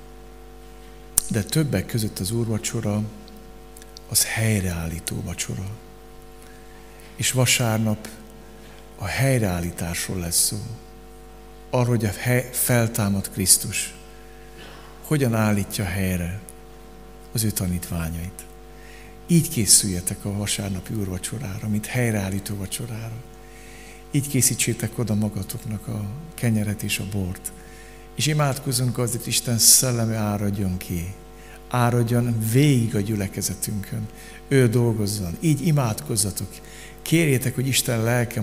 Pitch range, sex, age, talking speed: 95-120 Hz, male, 60-79, 95 wpm